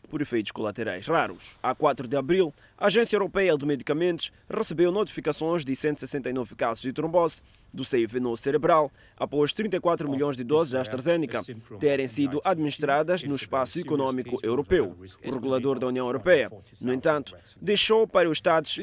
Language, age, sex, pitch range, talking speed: Portuguese, 20-39, male, 130-160 Hz, 155 wpm